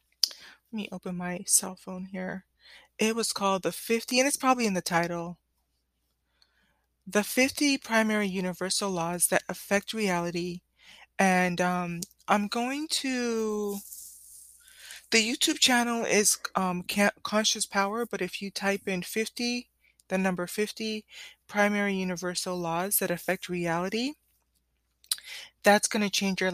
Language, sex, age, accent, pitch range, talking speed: English, female, 20-39, American, 180-210 Hz, 130 wpm